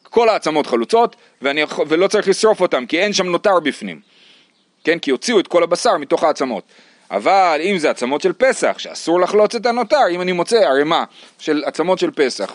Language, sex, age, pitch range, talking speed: Hebrew, male, 30-49, 155-220 Hz, 185 wpm